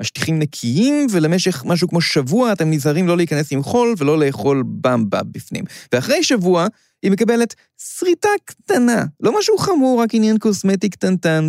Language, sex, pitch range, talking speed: Hebrew, male, 125-200 Hz, 150 wpm